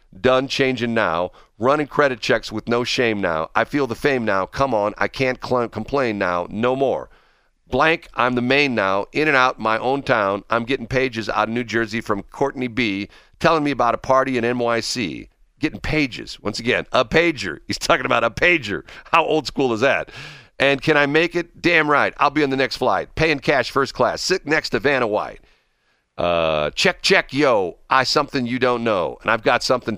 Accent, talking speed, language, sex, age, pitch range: American, 205 wpm, English, male, 50-69, 110-140 Hz